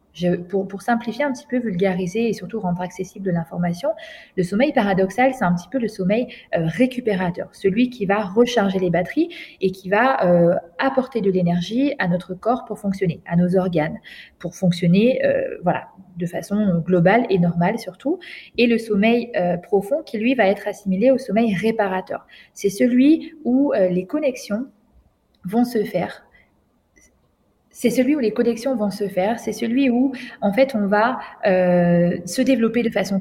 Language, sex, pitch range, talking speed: French, female, 180-240 Hz, 175 wpm